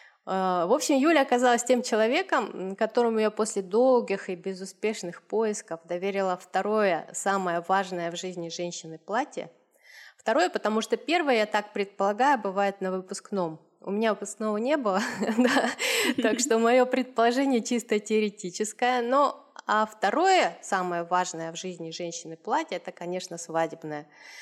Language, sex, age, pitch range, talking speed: Russian, female, 20-39, 180-230 Hz, 130 wpm